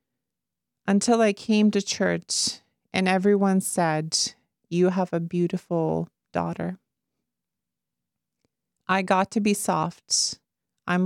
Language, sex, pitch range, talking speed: English, female, 175-200 Hz, 105 wpm